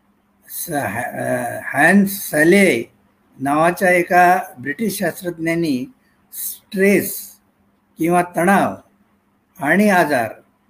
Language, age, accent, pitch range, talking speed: Marathi, 60-79, native, 160-195 Hz, 75 wpm